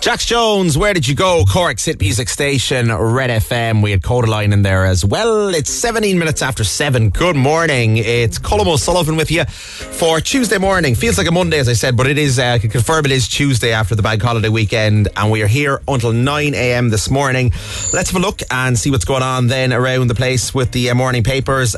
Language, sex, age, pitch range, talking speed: English, male, 30-49, 105-135 Hz, 225 wpm